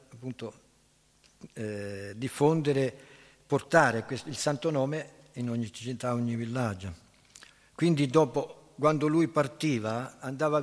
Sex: male